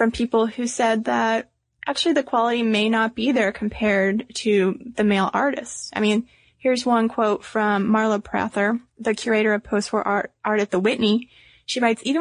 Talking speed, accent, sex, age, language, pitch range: 175 wpm, American, female, 20-39, English, 205-240 Hz